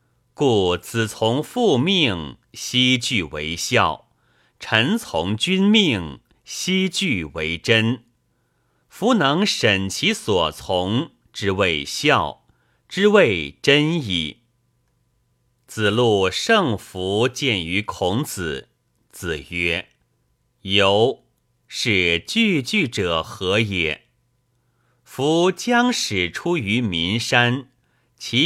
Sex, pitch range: male, 95-140 Hz